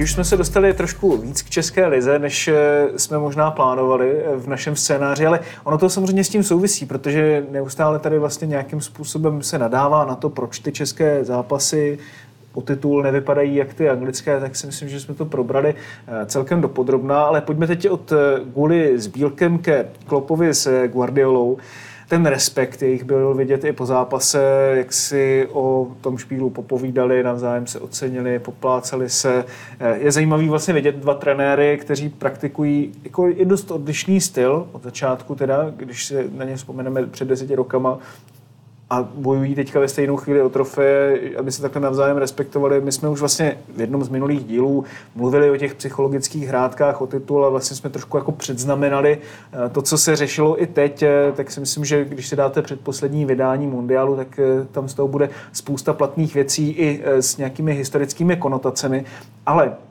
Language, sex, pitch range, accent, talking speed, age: Czech, male, 130-150 Hz, native, 170 wpm, 30-49